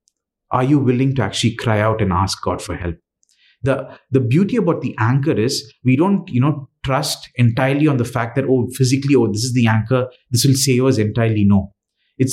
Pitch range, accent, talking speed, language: 110-145 Hz, Indian, 210 wpm, English